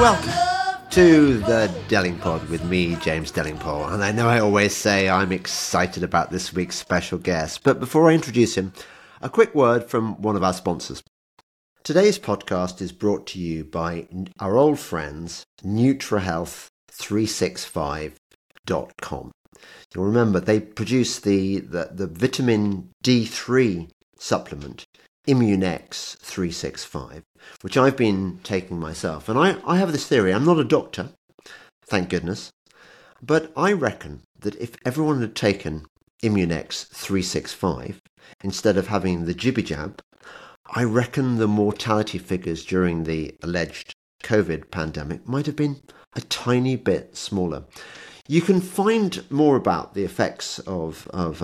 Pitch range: 85-125 Hz